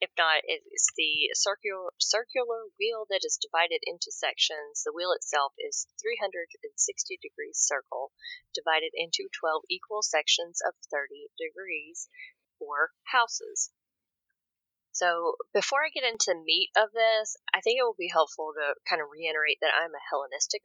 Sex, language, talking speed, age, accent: female, English, 150 wpm, 30-49, American